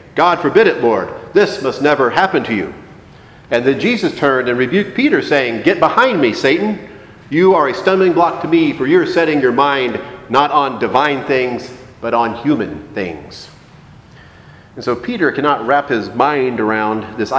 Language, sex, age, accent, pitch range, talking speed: English, male, 40-59, American, 115-155 Hz, 175 wpm